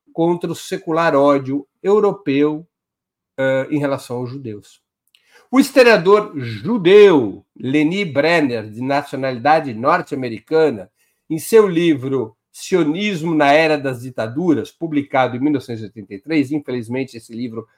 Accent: Brazilian